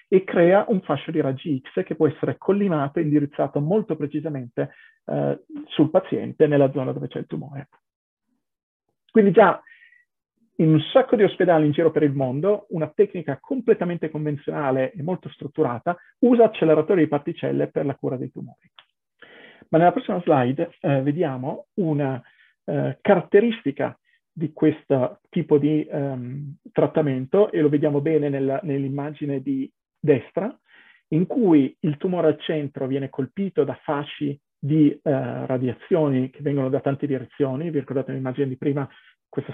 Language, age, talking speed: Italian, 40-59, 145 wpm